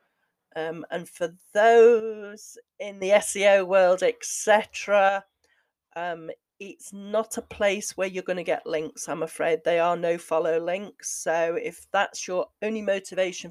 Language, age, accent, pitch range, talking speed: English, 40-59, British, 175-230 Hz, 140 wpm